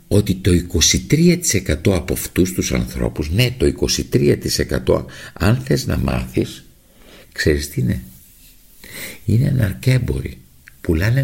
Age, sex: 60-79, male